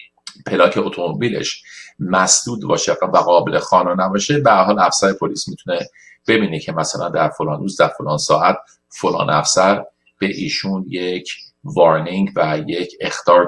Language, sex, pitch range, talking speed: Persian, male, 95-115 Hz, 140 wpm